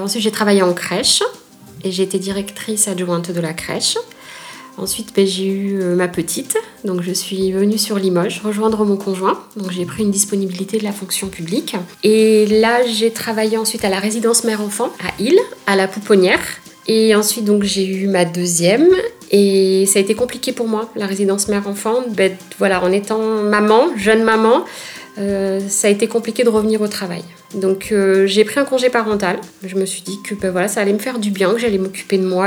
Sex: female